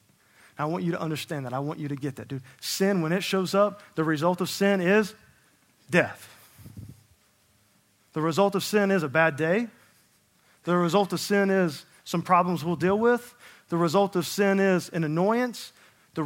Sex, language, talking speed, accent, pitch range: male, English, 185 wpm, American, 150-205 Hz